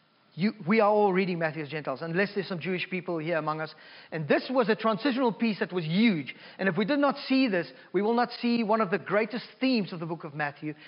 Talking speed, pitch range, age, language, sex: 250 wpm, 185-240 Hz, 40-59, English, male